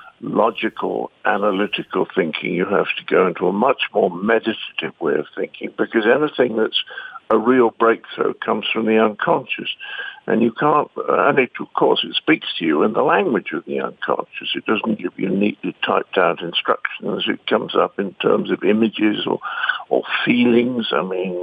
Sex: male